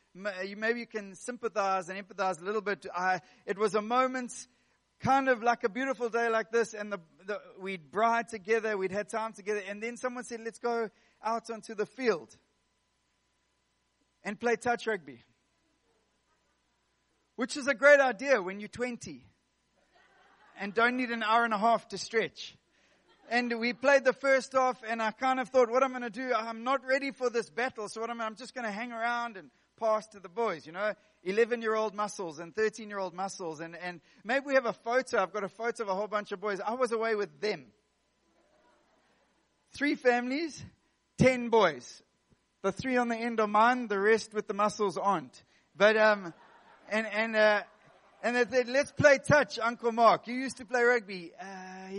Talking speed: 195 wpm